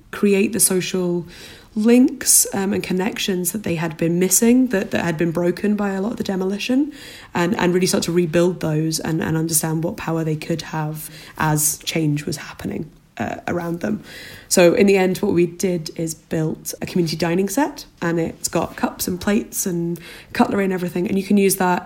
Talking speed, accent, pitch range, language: 200 wpm, British, 165-195 Hz, English